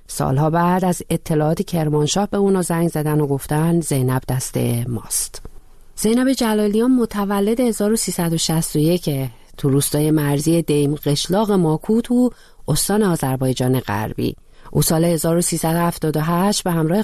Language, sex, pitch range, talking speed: Persian, female, 135-185 Hz, 115 wpm